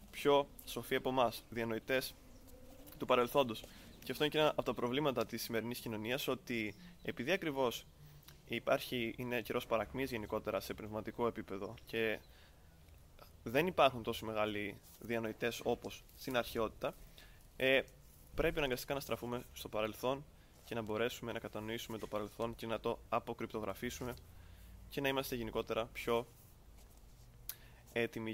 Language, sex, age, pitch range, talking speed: Greek, male, 20-39, 105-120 Hz, 130 wpm